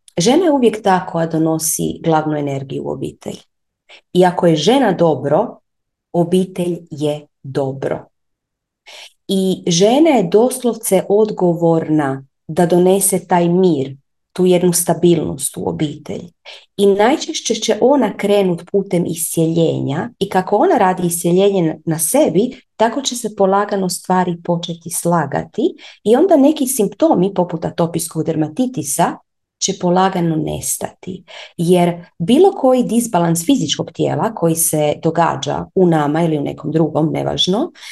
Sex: female